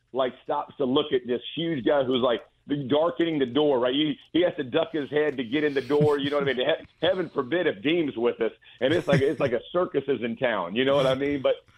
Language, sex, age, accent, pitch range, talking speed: English, male, 40-59, American, 110-135 Hz, 270 wpm